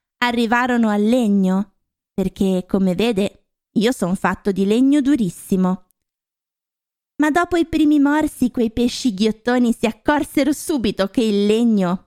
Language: Italian